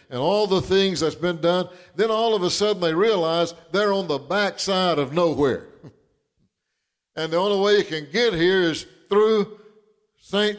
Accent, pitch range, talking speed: American, 155-215 Hz, 175 wpm